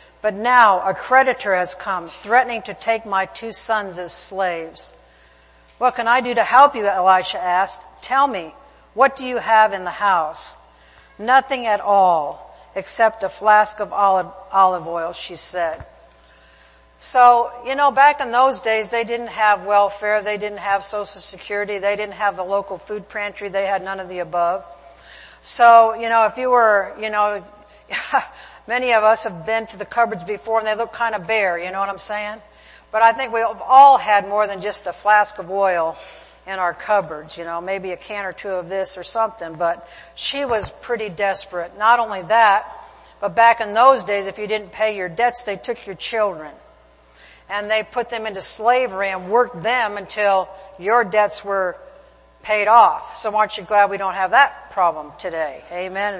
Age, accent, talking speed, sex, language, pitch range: 60-79, American, 190 wpm, female, English, 190-225 Hz